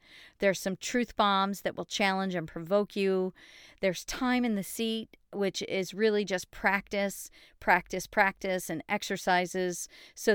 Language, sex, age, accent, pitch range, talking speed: English, female, 40-59, American, 170-210 Hz, 145 wpm